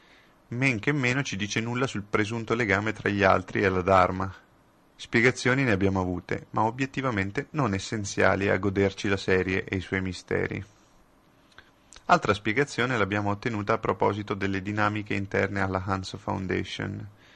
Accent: native